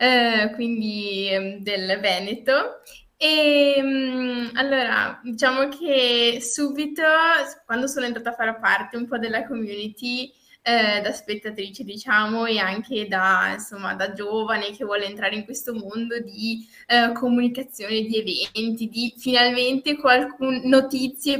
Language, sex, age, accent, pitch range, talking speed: Italian, female, 20-39, native, 220-260 Hz, 110 wpm